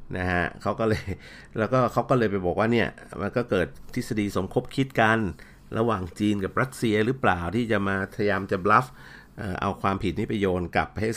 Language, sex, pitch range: Thai, male, 85-110 Hz